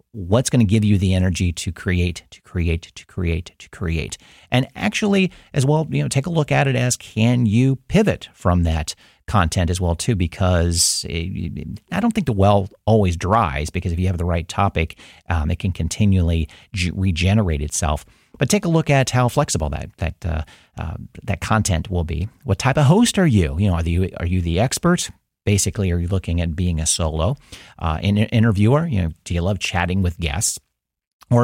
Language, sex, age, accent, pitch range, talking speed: English, male, 40-59, American, 85-110 Hz, 205 wpm